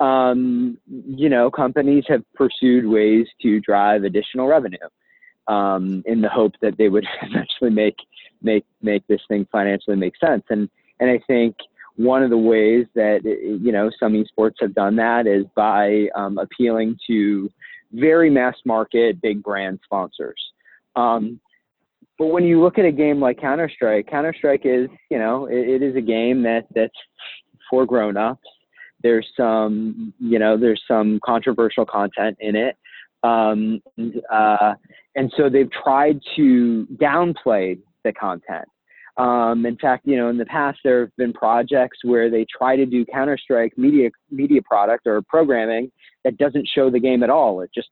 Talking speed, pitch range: 160 wpm, 110-135 Hz